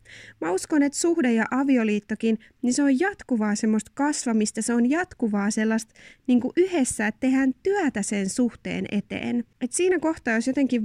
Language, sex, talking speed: Finnish, female, 160 wpm